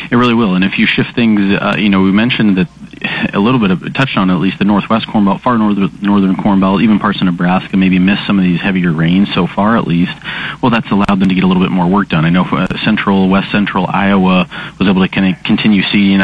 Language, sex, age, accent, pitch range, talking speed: English, male, 30-49, American, 90-100 Hz, 270 wpm